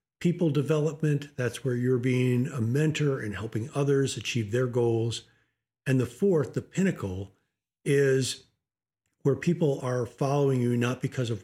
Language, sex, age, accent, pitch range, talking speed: English, male, 50-69, American, 115-145 Hz, 145 wpm